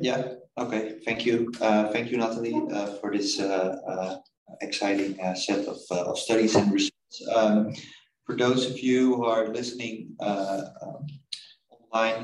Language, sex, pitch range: English, male, 100-115 Hz